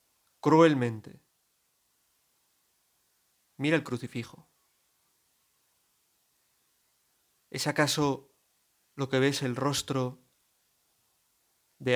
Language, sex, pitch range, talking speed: Spanish, male, 125-140 Hz, 60 wpm